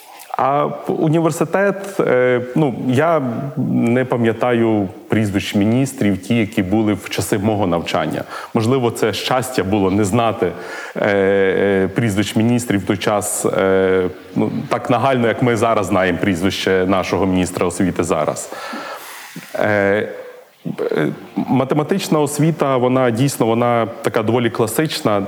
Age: 30-49